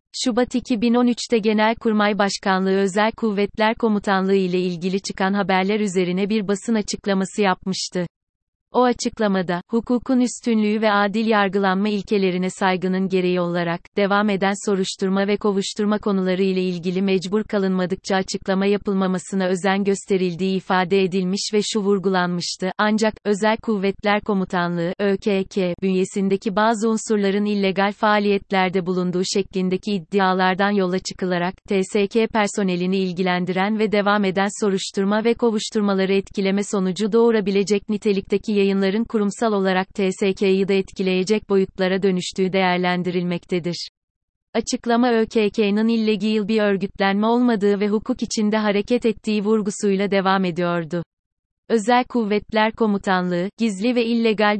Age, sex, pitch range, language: 30-49, female, 190-215 Hz, Turkish